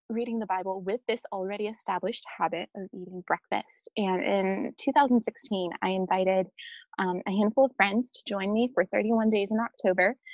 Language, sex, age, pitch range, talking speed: English, female, 20-39, 185-235 Hz, 170 wpm